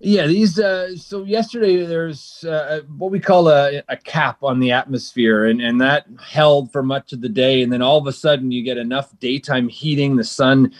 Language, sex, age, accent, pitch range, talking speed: English, male, 30-49, American, 120-150 Hz, 210 wpm